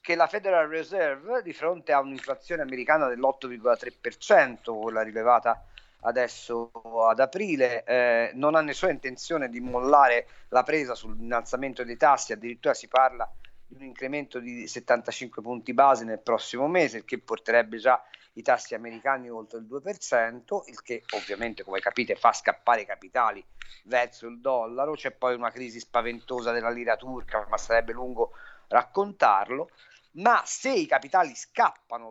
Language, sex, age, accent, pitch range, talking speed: Italian, male, 50-69, native, 115-140 Hz, 150 wpm